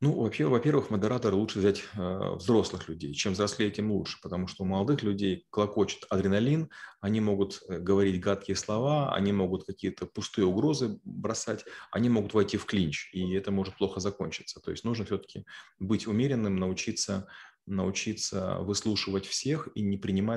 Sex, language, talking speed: male, Russian, 155 wpm